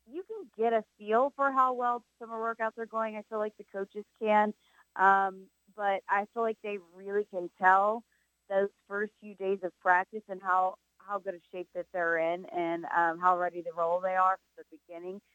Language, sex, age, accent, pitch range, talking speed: English, female, 30-49, American, 175-210 Hz, 205 wpm